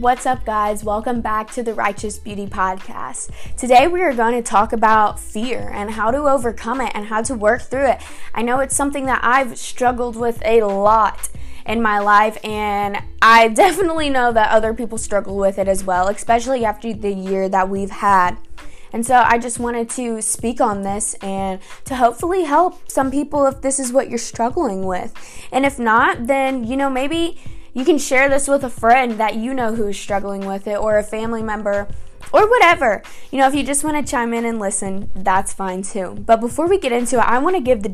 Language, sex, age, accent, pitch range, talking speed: English, female, 10-29, American, 205-260 Hz, 215 wpm